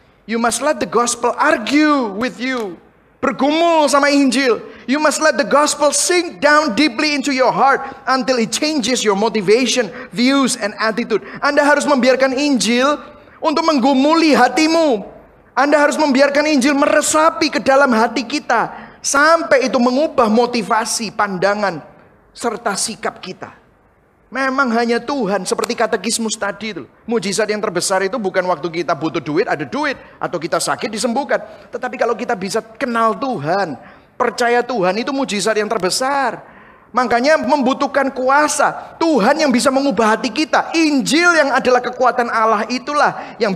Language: Indonesian